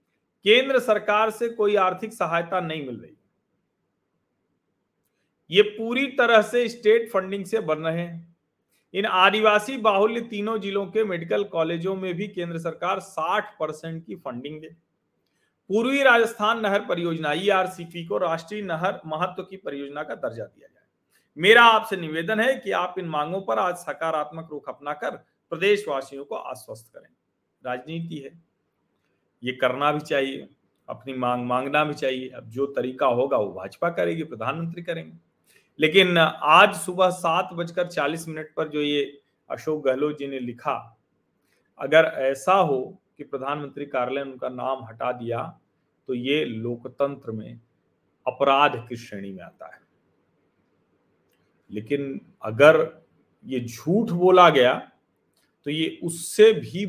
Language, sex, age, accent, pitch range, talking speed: Hindi, male, 40-59, native, 140-195 Hz, 140 wpm